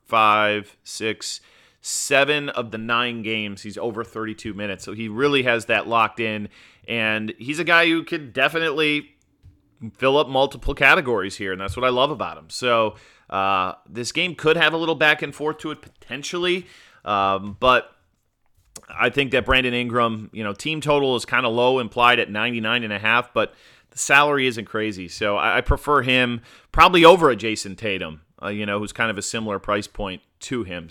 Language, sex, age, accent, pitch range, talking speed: English, male, 30-49, American, 110-145 Hz, 190 wpm